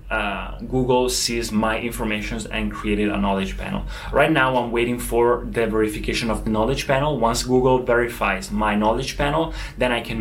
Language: Italian